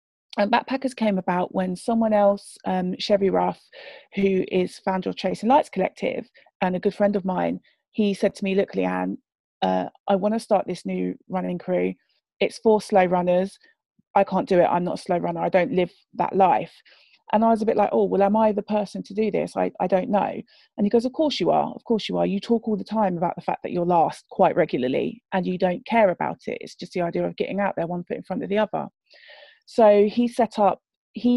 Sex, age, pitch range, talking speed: female, 30-49, 180-220 Hz, 240 wpm